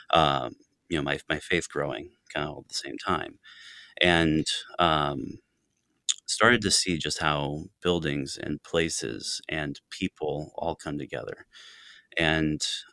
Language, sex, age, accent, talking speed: English, male, 30-49, American, 140 wpm